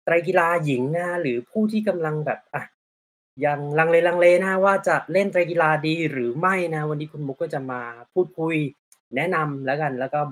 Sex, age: male, 20-39